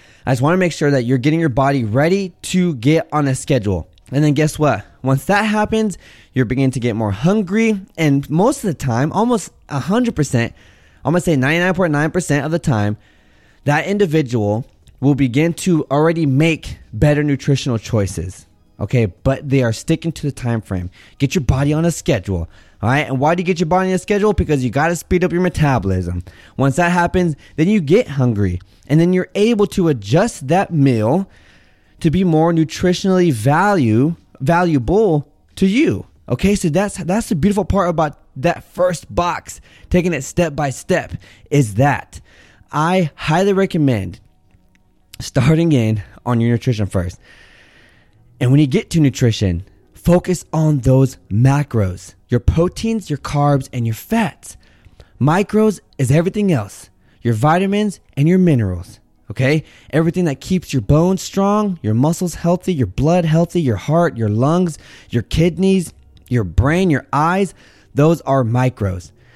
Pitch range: 115-175 Hz